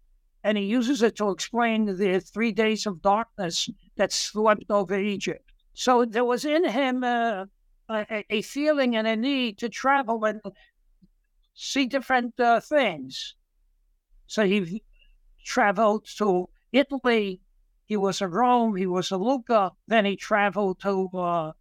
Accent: American